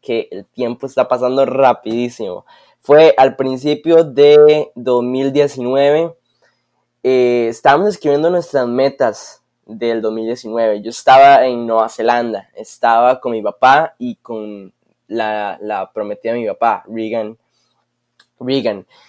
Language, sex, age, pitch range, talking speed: Spanish, male, 10-29, 115-140 Hz, 115 wpm